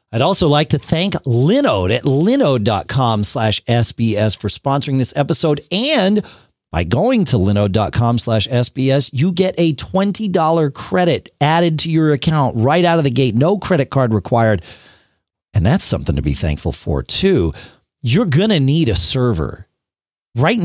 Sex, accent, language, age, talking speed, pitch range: male, American, English, 40-59, 155 wpm, 115-180 Hz